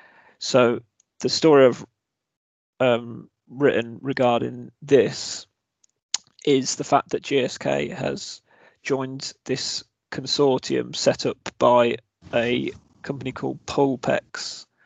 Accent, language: British, English